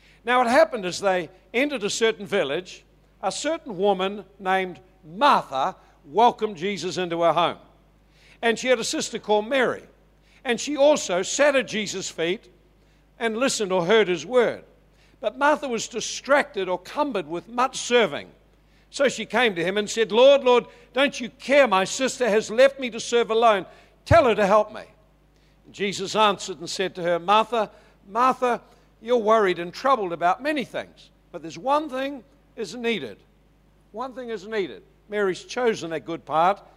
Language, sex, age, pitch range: English, male, 60-79, 185-235 Hz